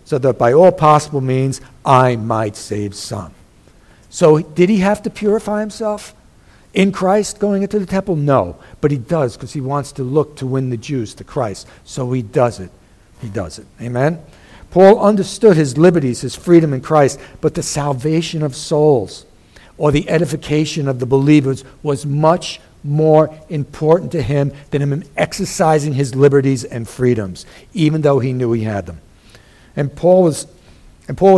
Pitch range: 130-175 Hz